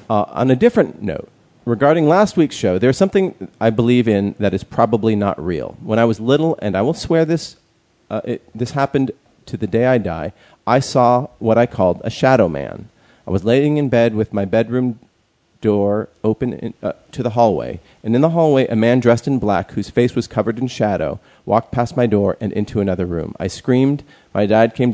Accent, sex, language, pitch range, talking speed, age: American, male, English, 95-120 Hz, 205 wpm, 40-59